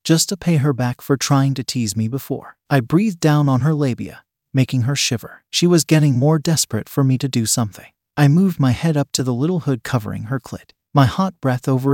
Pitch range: 120-155 Hz